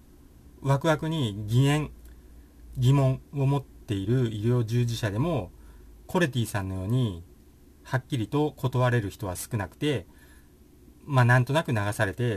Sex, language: male, Japanese